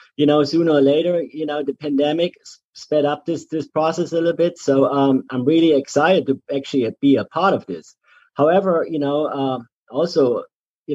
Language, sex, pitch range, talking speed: English, male, 125-150 Hz, 190 wpm